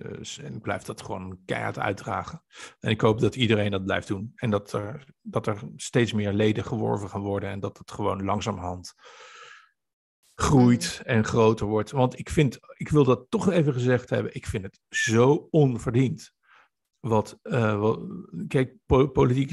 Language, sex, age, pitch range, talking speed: Dutch, male, 50-69, 110-130 Hz, 170 wpm